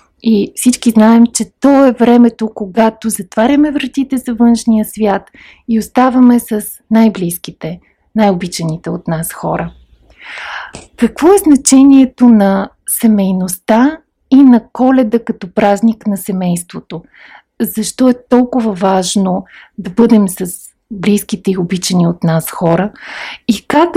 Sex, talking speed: female, 120 wpm